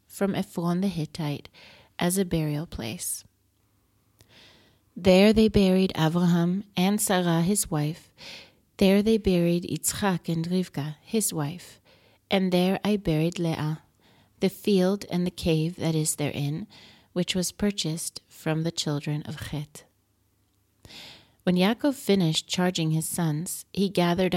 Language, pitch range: English, 150-190 Hz